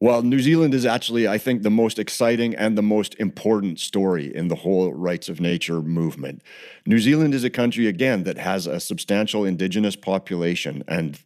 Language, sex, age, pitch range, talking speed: English, male, 40-59, 85-105 Hz, 185 wpm